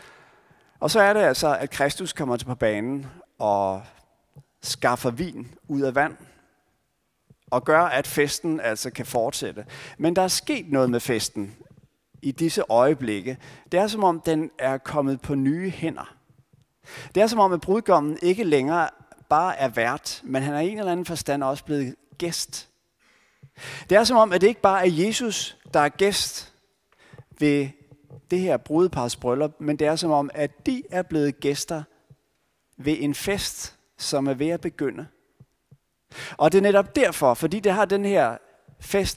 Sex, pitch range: male, 135-180 Hz